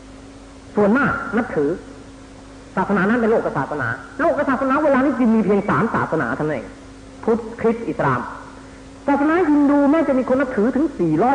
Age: 40-59